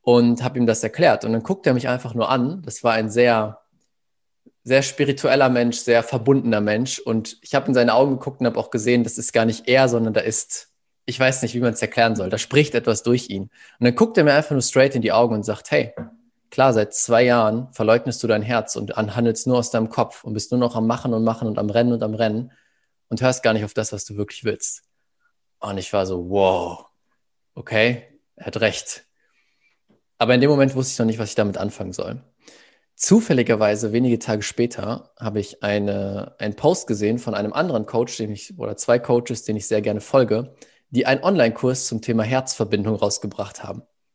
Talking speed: 215 wpm